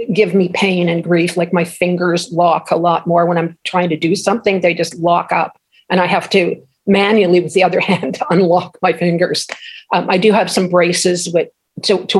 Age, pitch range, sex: 50-69, 170-200 Hz, female